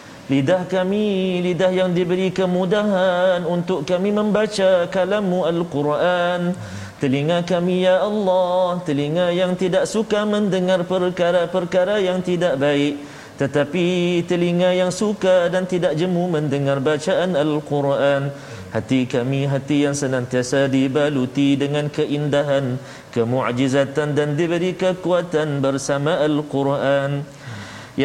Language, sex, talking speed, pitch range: Malayalam, male, 120 wpm, 140-185 Hz